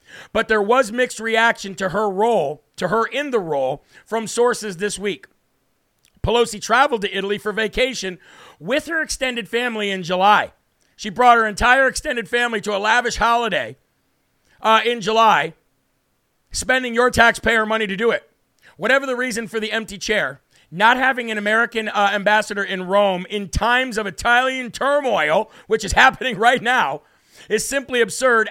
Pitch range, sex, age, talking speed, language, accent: 205-240 Hz, male, 50-69, 160 wpm, English, American